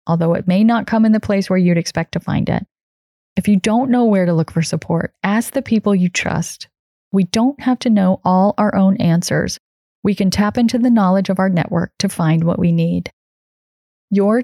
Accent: American